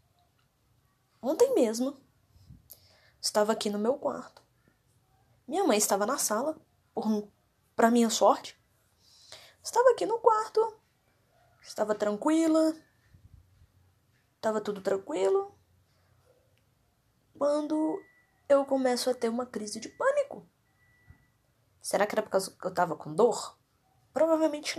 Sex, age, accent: female, 20-39, Brazilian